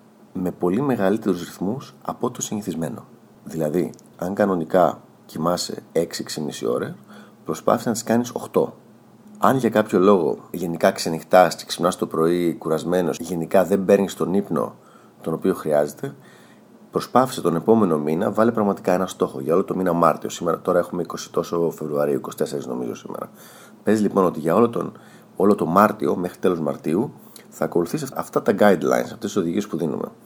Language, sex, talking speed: Greek, male, 165 wpm